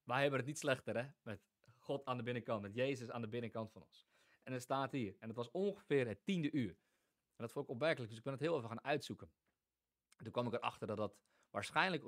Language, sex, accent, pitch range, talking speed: English, male, Dutch, 100-125 Hz, 245 wpm